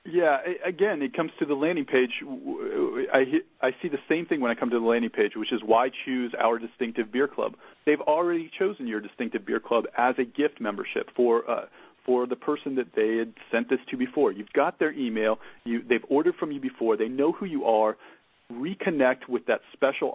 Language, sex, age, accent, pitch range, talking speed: English, male, 40-59, American, 115-165 Hz, 210 wpm